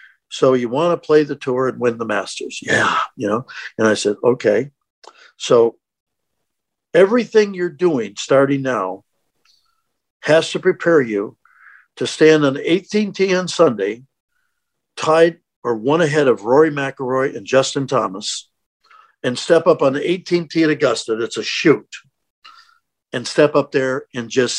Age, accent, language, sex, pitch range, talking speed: 50-69, American, English, male, 130-185 Hz, 150 wpm